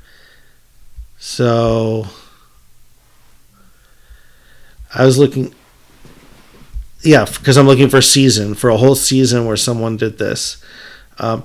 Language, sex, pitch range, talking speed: English, male, 110-135 Hz, 105 wpm